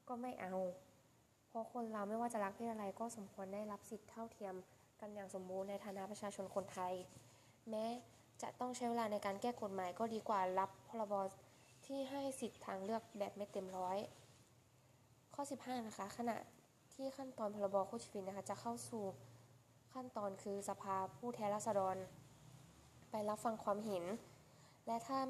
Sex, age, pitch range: female, 10-29, 185-225 Hz